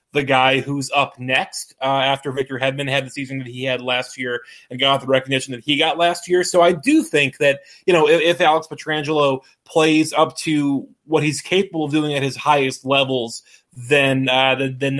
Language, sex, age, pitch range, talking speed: English, male, 20-39, 130-155 Hz, 210 wpm